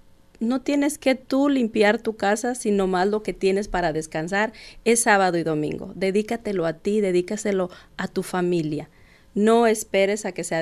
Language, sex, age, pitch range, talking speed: Spanish, female, 40-59, 180-230 Hz, 170 wpm